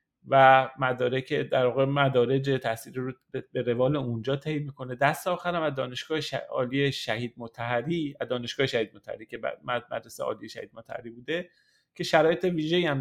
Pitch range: 120-150 Hz